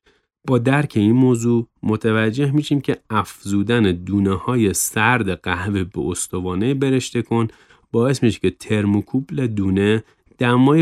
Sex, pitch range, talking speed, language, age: male, 95-130 Hz, 120 wpm, Persian, 30-49